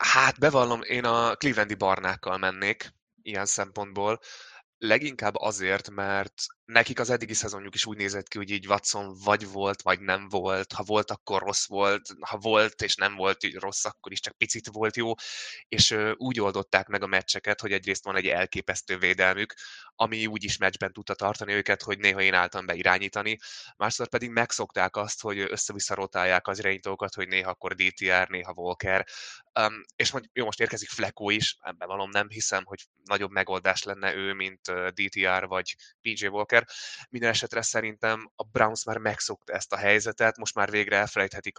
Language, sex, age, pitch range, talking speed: Hungarian, male, 20-39, 95-105 Hz, 175 wpm